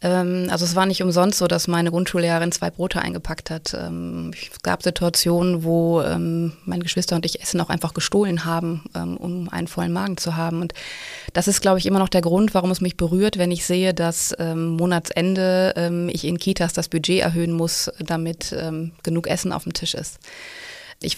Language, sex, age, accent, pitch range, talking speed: German, female, 20-39, German, 165-180 Hz, 185 wpm